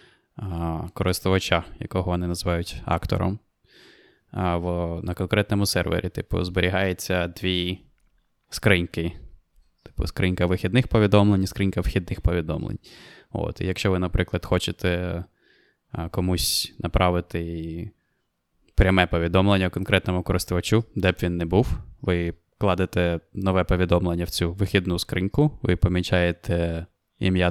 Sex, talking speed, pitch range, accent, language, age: male, 105 wpm, 85-95 Hz, native, Ukrainian, 20-39